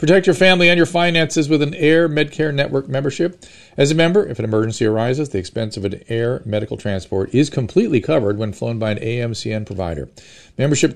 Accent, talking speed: American, 195 wpm